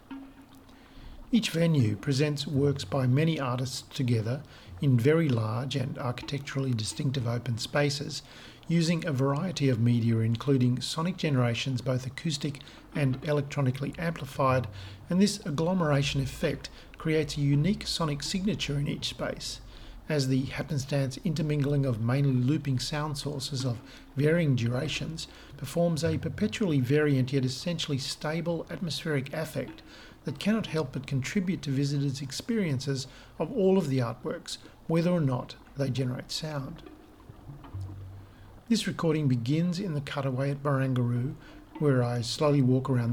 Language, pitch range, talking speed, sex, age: English, 130-155 Hz, 130 wpm, male, 50-69